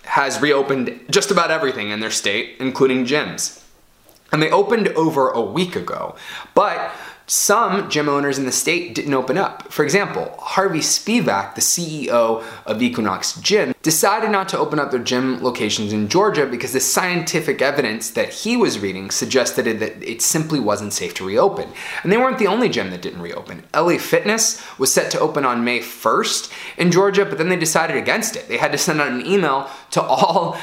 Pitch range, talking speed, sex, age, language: 120-175 Hz, 190 wpm, male, 20-39, English